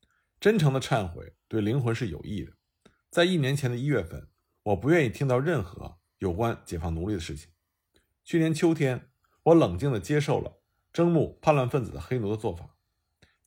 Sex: male